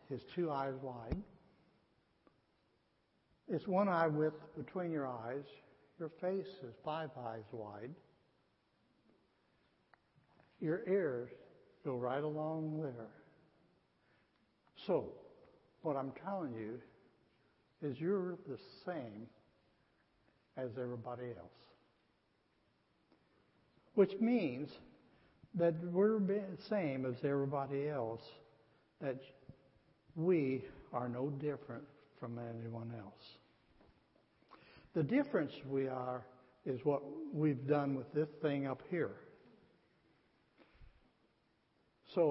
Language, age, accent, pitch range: English, 60-79, American, 125-170 Hz